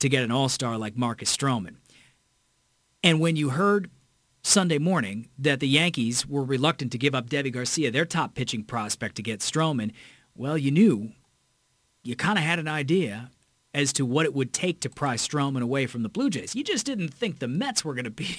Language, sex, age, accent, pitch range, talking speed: English, male, 40-59, American, 125-165 Hz, 200 wpm